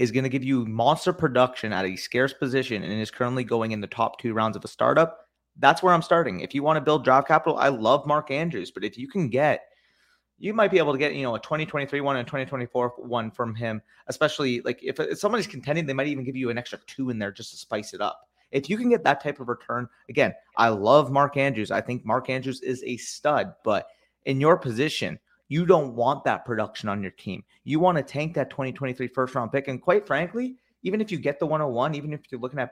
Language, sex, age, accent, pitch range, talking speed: English, male, 30-49, American, 120-155 Hz, 245 wpm